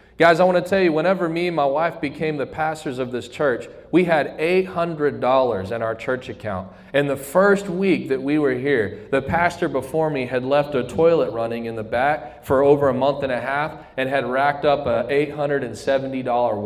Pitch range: 135-175 Hz